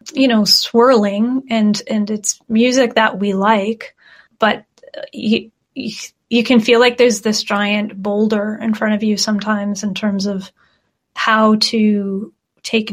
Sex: female